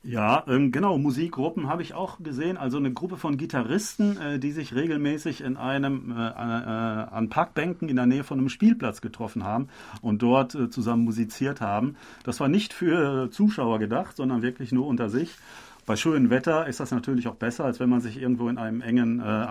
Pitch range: 115-140 Hz